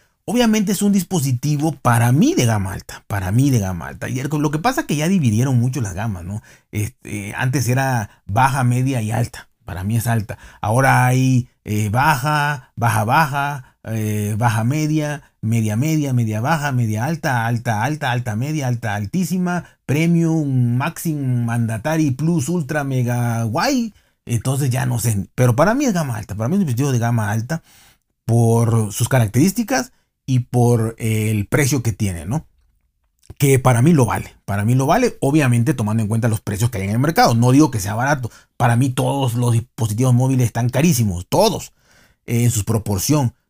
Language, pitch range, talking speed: Spanish, 110-150 Hz, 185 wpm